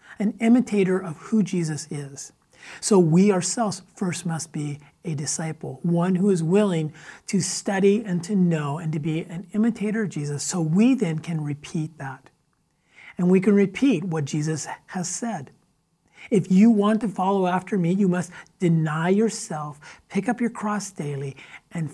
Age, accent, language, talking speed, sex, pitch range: 40-59, American, English, 165 wpm, male, 155-215 Hz